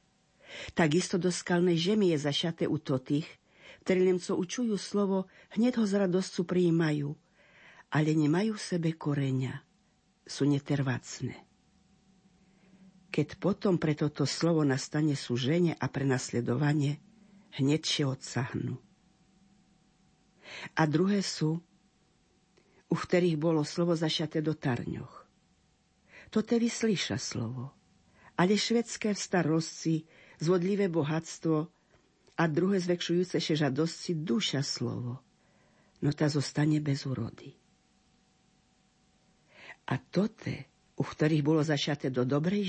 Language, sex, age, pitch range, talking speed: Slovak, female, 50-69, 140-185 Hz, 105 wpm